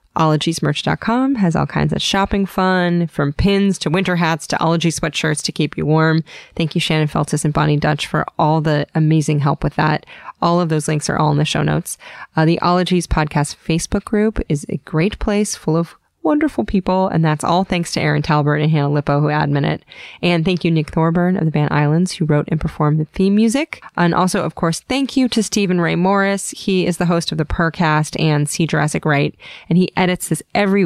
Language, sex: English, female